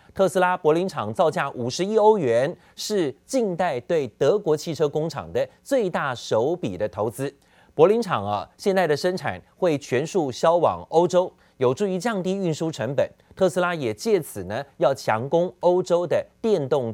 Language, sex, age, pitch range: Chinese, male, 30-49, 135-190 Hz